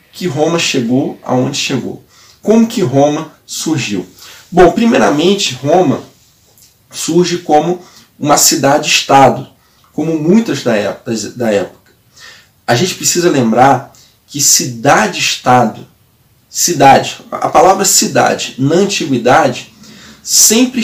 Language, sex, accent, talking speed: Portuguese, male, Brazilian, 95 wpm